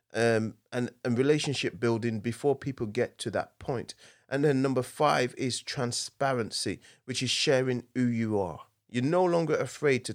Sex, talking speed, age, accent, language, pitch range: male, 165 wpm, 30-49, British, English, 115-140 Hz